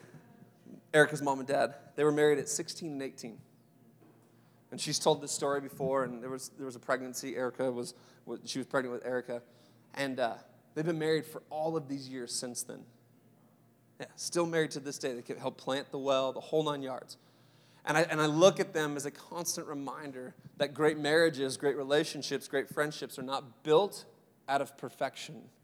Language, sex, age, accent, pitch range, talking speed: English, male, 20-39, American, 125-150 Hz, 190 wpm